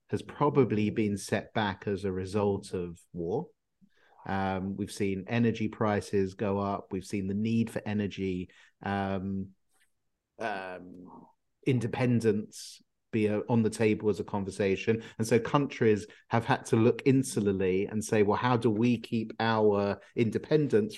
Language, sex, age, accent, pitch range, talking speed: English, male, 30-49, British, 100-125 Hz, 145 wpm